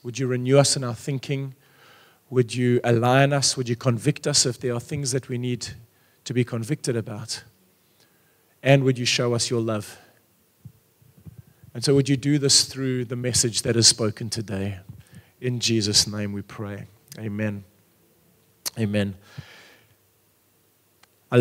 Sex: male